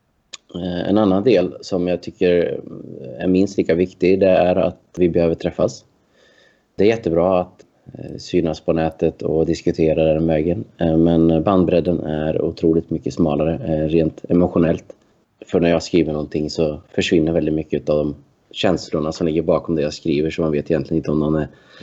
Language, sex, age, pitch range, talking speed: Swedish, male, 30-49, 80-95 Hz, 170 wpm